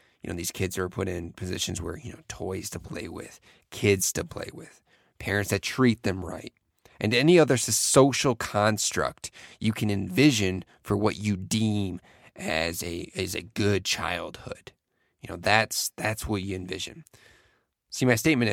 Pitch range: 95-125 Hz